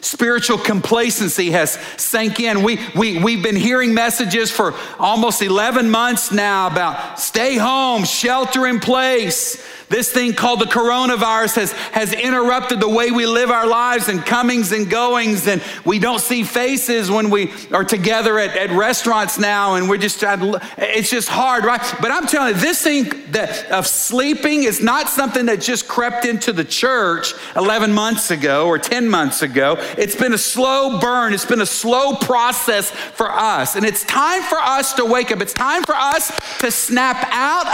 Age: 50-69